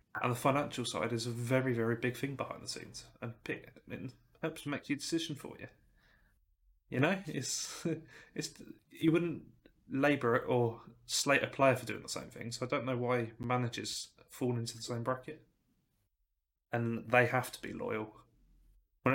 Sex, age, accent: male, 20-39, British